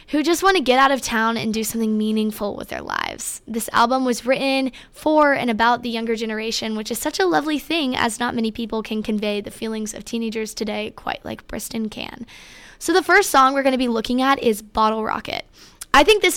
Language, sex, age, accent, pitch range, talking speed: English, female, 10-29, American, 220-265 Hz, 225 wpm